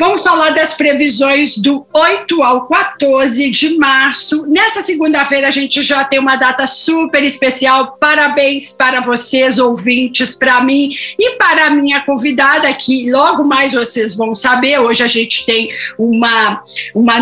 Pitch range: 245-295 Hz